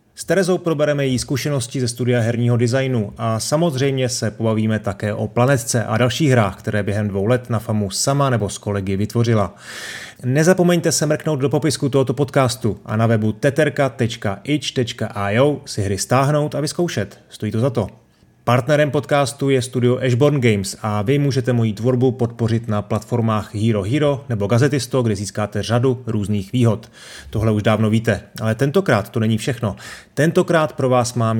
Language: Czech